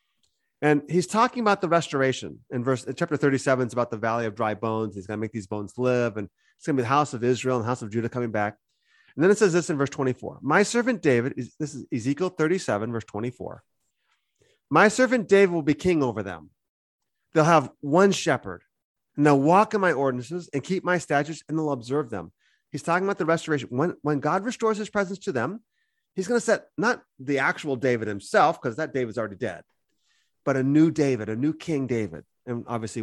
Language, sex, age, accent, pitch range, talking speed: English, male, 30-49, American, 125-185 Hz, 220 wpm